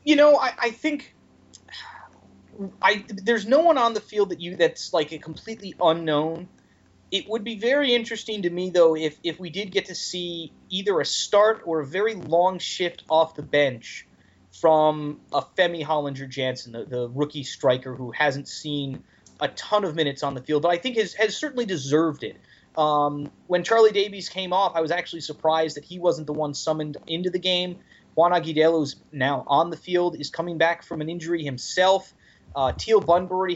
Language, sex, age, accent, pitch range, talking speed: English, male, 30-49, American, 150-190 Hz, 190 wpm